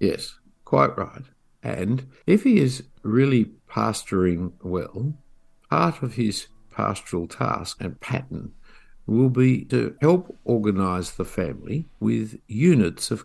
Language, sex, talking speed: English, male, 120 wpm